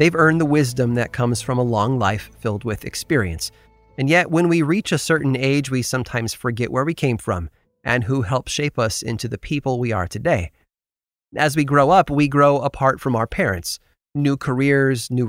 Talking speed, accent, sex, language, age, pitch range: 205 wpm, American, male, English, 30-49, 110-150 Hz